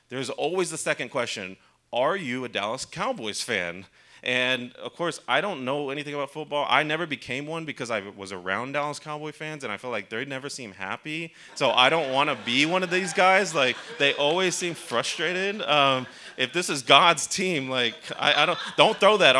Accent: American